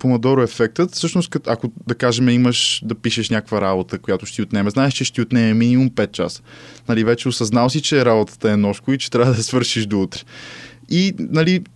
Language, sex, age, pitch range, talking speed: Bulgarian, male, 20-39, 110-145 Hz, 200 wpm